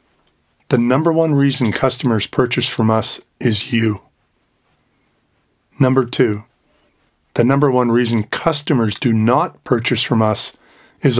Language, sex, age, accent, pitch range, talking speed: English, male, 40-59, American, 110-130 Hz, 125 wpm